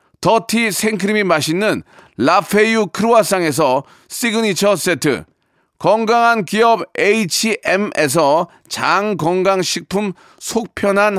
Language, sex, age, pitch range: Korean, male, 40-59, 180-235 Hz